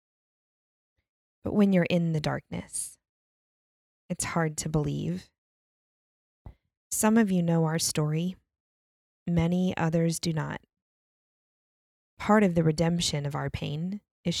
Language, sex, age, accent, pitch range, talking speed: English, female, 20-39, American, 150-175 Hz, 115 wpm